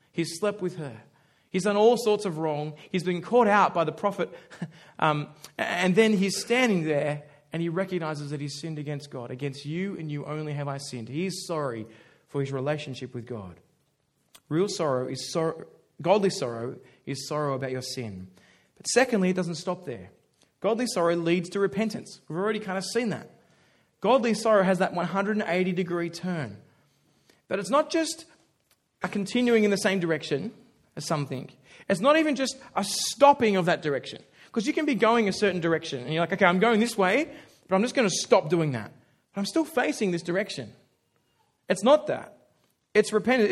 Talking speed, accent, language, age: 190 wpm, Australian, English, 20-39